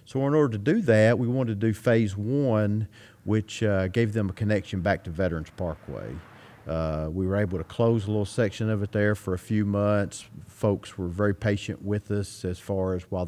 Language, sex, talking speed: English, male, 215 wpm